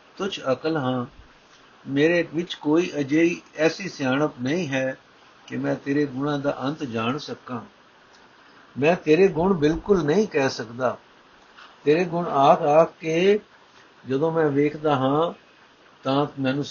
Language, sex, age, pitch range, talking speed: Punjabi, male, 60-79, 130-160 Hz, 135 wpm